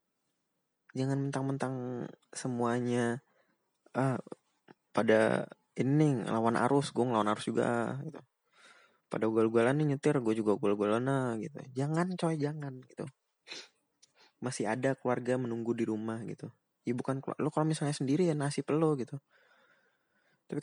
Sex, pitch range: male, 115-140 Hz